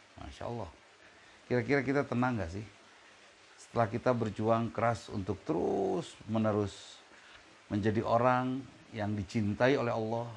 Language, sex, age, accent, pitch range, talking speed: Indonesian, male, 50-69, native, 90-115 Hz, 115 wpm